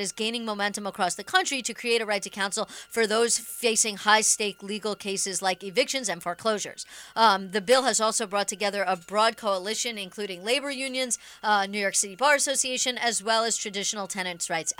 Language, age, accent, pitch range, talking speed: English, 40-59, American, 200-240 Hz, 190 wpm